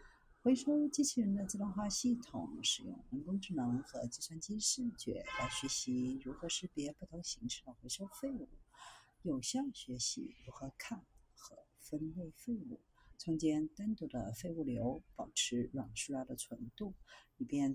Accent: native